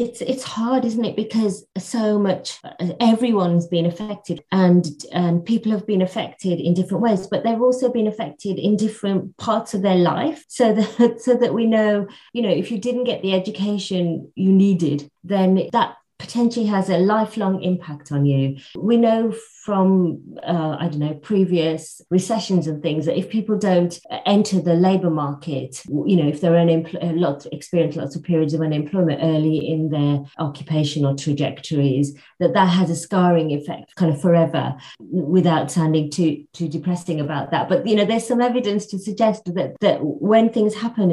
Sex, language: female, English